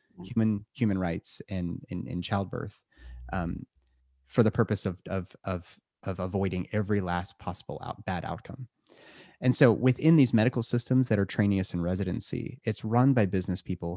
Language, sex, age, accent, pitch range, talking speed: English, male, 30-49, American, 95-125 Hz, 170 wpm